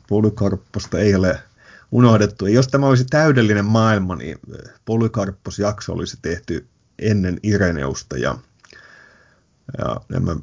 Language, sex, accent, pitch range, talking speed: Finnish, male, native, 95-120 Hz, 115 wpm